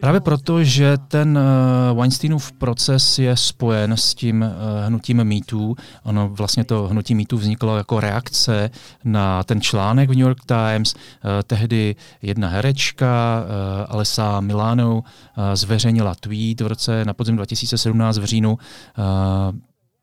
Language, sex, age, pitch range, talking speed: Czech, male, 40-59, 105-125 Hz, 125 wpm